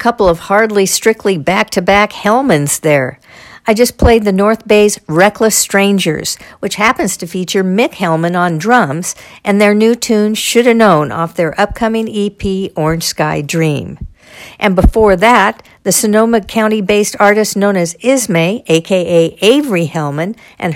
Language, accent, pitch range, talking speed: English, American, 175-220 Hz, 145 wpm